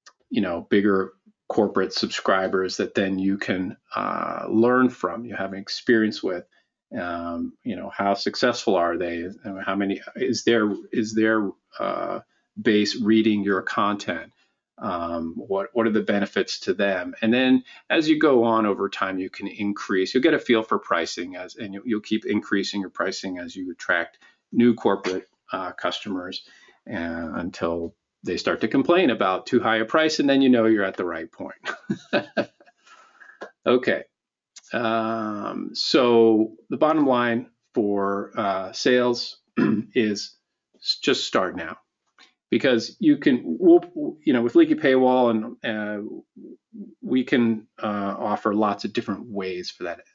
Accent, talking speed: American, 150 wpm